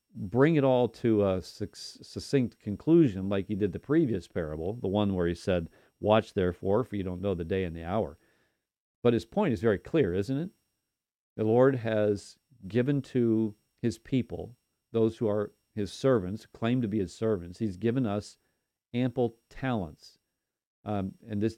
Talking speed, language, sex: 170 wpm, English, male